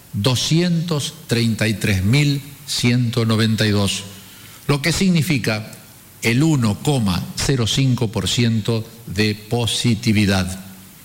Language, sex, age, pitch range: Spanish, male, 50-69, 105-135 Hz